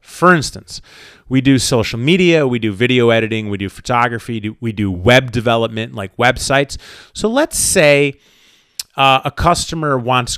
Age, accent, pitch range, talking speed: 30-49, American, 115-170 Hz, 150 wpm